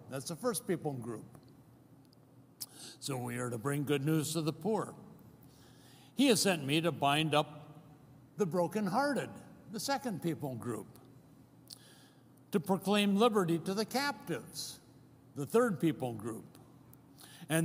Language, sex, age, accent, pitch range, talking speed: English, male, 60-79, American, 135-185 Hz, 135 wpm